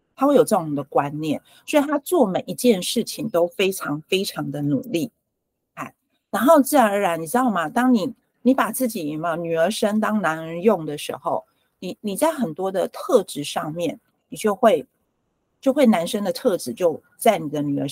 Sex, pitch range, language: female, 165-250 Hz, Chinese